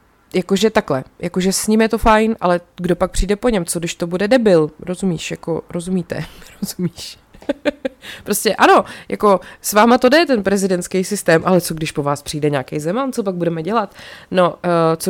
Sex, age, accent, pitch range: female, 20-39, native, 170-205 Hz